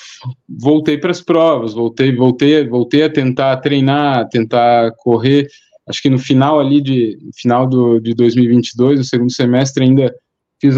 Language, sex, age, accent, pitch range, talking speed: Portuguese, male, 20-39, Brazilian, 120-150 Hz, 155 wpm